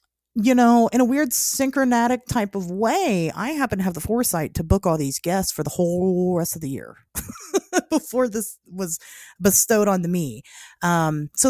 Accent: American